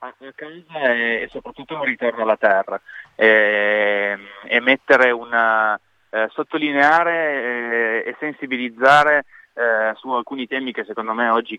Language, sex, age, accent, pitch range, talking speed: Italian, male, 20-39, native, 115-145 Hz, 130 wpm